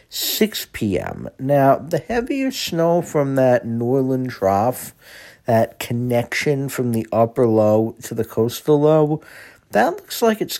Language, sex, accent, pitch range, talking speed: English, male, American, 110-150 Hz, 135 wpm